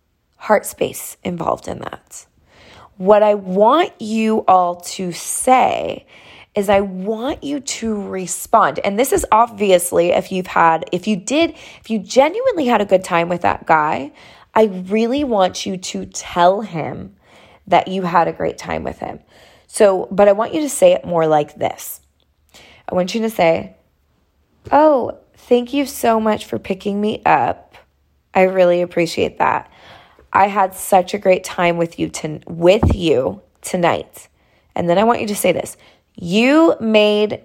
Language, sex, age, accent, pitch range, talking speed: English, female, 20-39, American, 175-230 Hz, 165 wpm